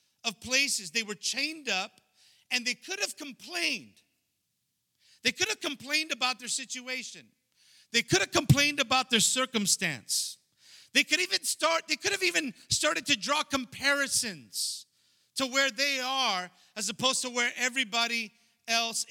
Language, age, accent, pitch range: English, 50-69, American, 220-265 Hz